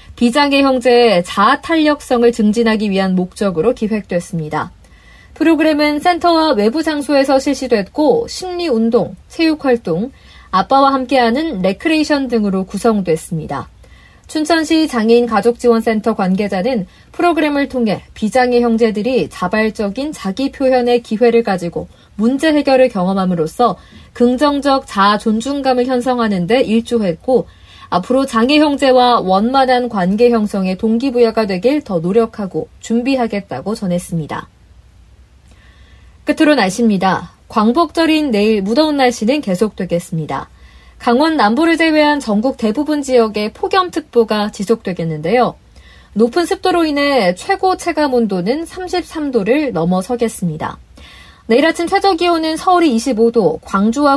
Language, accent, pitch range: Korean, native, 200-280 Hz